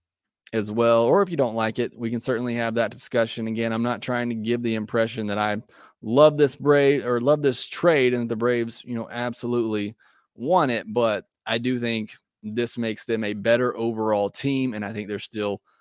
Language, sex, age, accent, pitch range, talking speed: English, male, 30-49, American, 110-130 Hz, 210 wpm